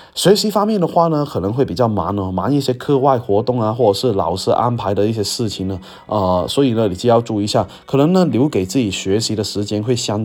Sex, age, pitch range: male, 20-39, 100-140 Hz